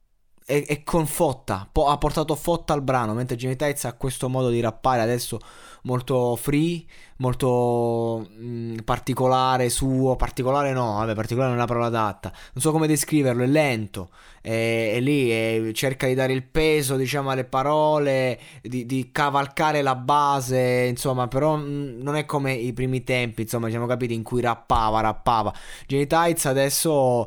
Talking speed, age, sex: 165 wpm, 20-39, male